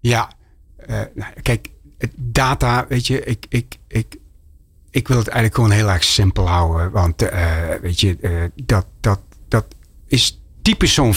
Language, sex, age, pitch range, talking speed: Dutch, male, 60-79, 95-125 Hz, 155 wpm